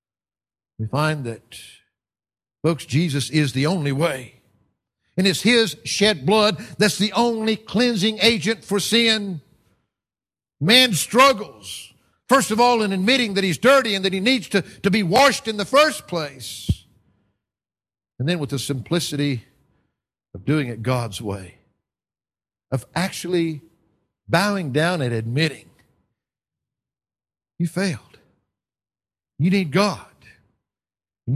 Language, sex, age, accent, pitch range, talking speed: English, male, 60-79, American, 125-200 Hz, 125 wpm